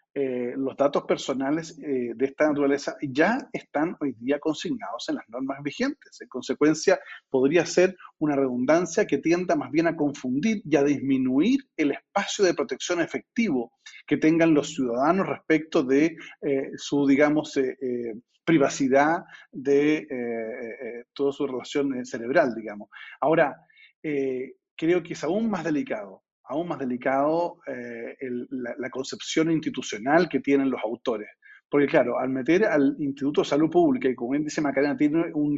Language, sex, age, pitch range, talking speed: Spanish, male, 40-59, 130-165 Hz, 155 wpm